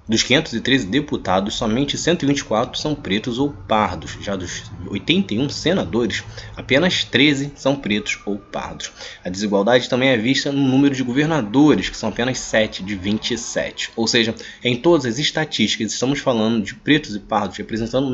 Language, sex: Portuguese, male